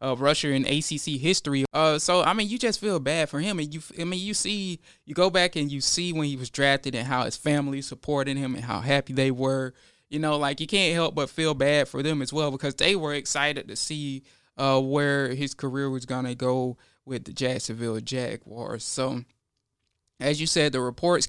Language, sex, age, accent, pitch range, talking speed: English, male, 20-39, American, 130-165 Hz, 220 wpm